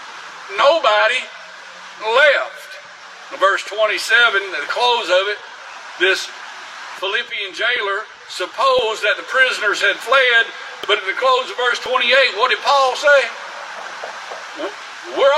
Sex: male